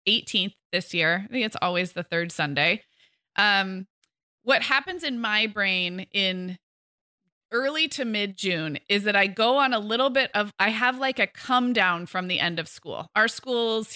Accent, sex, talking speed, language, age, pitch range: American, female, 185 wpm, English, 20-39, 185-250 Hz